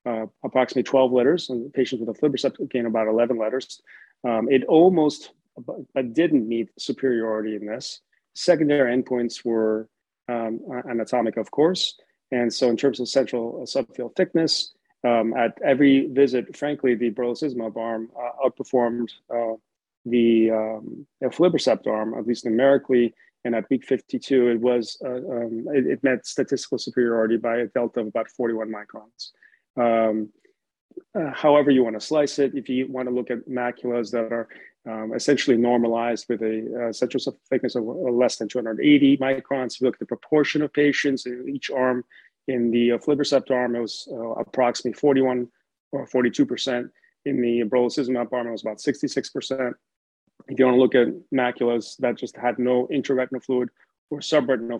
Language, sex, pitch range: English, male, 115-135 Hz